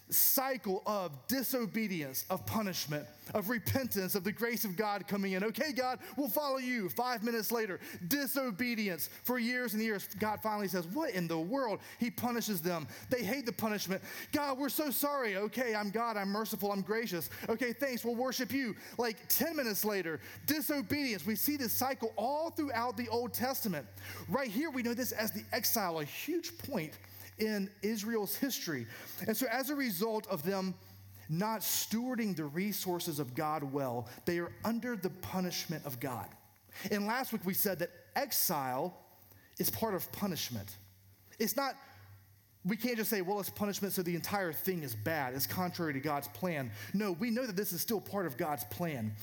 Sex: male